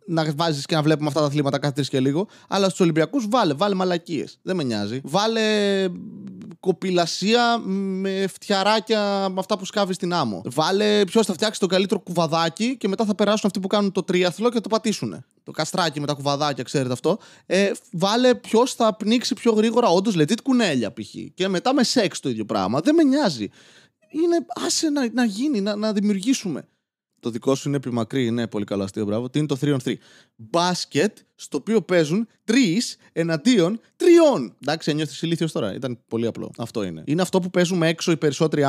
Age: 20-39